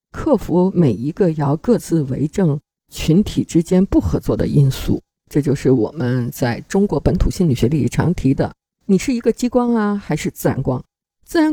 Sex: female